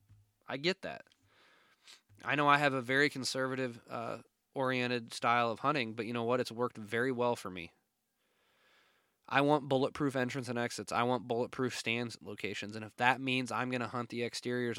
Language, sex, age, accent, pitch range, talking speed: English, male, 20-39, American, 110-130 Hz, 185 wpm